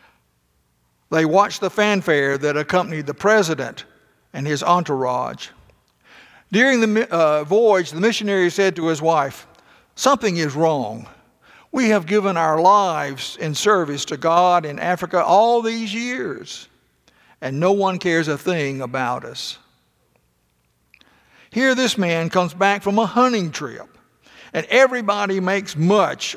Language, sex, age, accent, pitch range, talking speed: English, male, 60-79, American, 140-185 Hz, 135 wpm